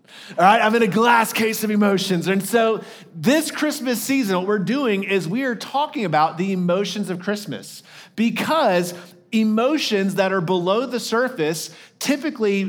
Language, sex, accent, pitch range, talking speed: English, male, American, 175-230 Hz, 160 wpm